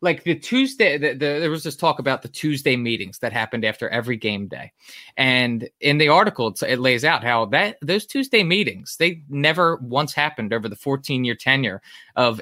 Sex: male